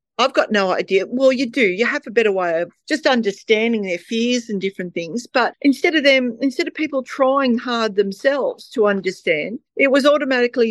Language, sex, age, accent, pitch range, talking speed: English, female, 40-59, Australian, 230-285 Hz, 195 wpm